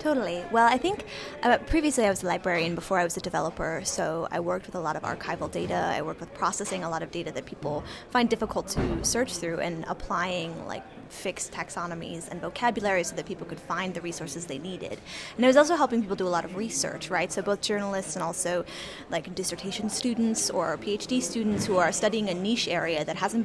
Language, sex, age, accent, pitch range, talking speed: English, female, 10-29, American, 175-215 Hz, 220 wpm